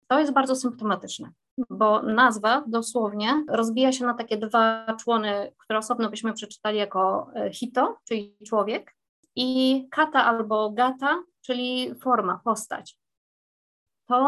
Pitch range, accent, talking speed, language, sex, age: 210-255 Hz, native, 120 wpm, Polish, female, 20-39